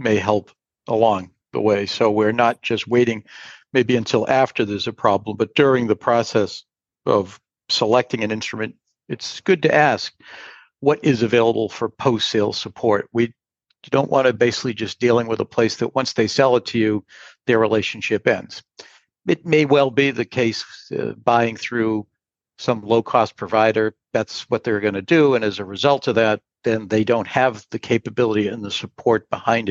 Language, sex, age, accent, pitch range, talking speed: English, male, 60-79, American, 105-120 Hz, 180 wpm